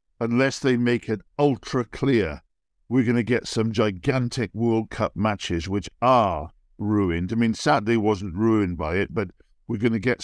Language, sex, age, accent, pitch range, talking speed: English, male, 50-69, British, 100-120 Hz, 175 wpm